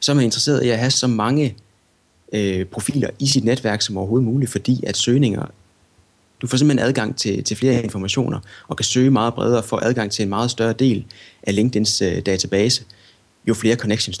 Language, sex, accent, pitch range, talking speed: Danish, male, native, 100-125 Hz, 195 wpm